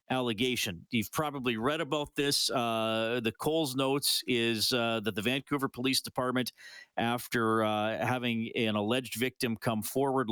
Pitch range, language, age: 110-125 Hz, English, 40-59